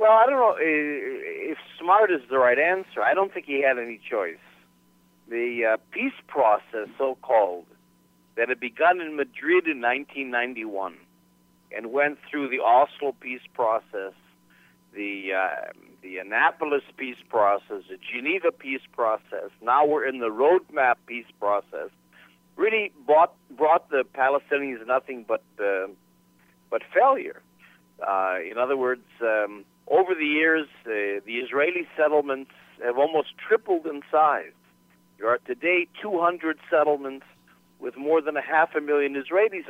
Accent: American